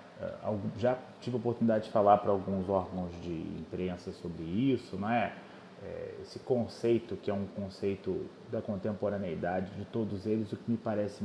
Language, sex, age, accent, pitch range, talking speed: Portuguese, male, 30-49, Brazilian, 105-145 Hz, 155 wpm